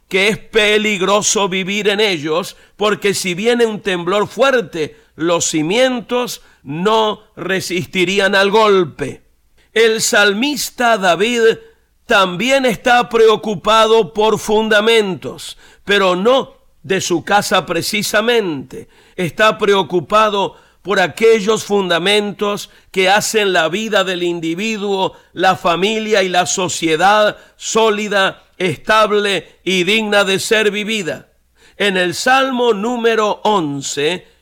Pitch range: 180-220 Hz